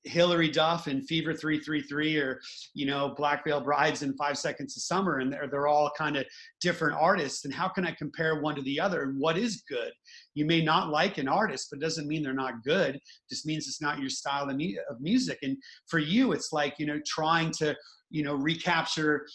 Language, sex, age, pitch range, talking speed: English, male, 30-49, 145-180 Hz, 215 wpm